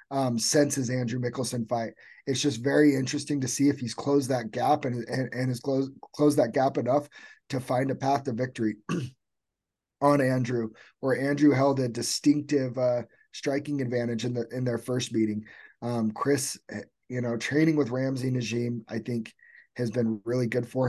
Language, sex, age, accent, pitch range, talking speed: English, male, 30-49, American, 115-135 Hz, 180 wpm